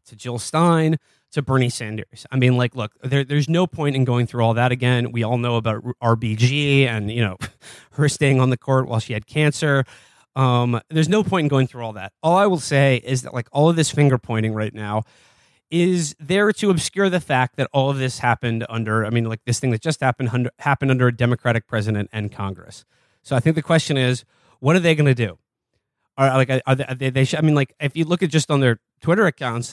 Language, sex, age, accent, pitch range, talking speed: English, male, 30-49, American, 115-145 Hz, 240 wpm